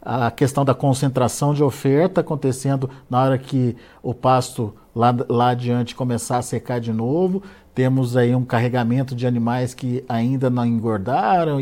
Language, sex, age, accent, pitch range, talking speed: Portuguese, male, 50-69, Brazilian, 125-165 Hz, 155 wpm